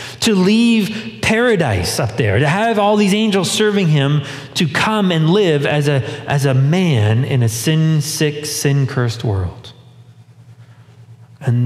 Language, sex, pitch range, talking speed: English, male, 115-160 Hz, 140 wpm